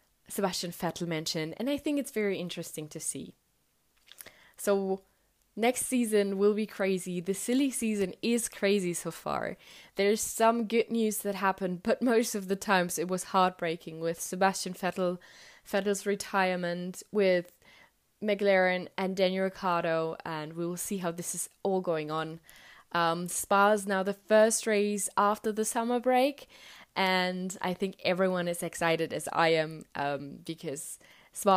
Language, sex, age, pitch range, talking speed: English, female, 10-29, 175-215 Hz, 150 wpm